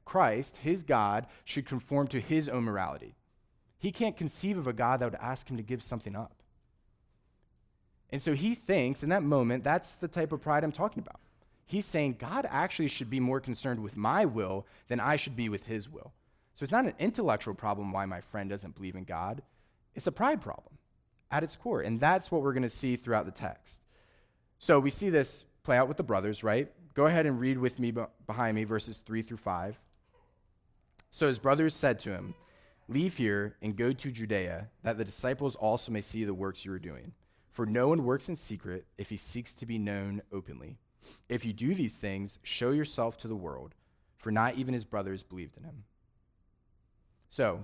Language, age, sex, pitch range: English, 30-49, male, 105-135 Hz